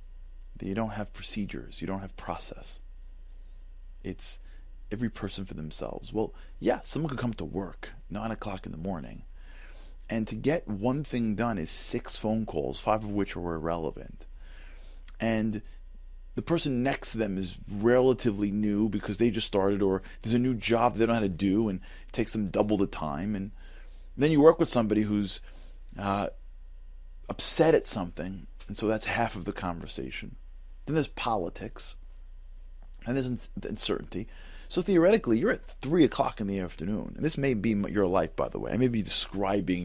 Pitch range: 70-115 Hz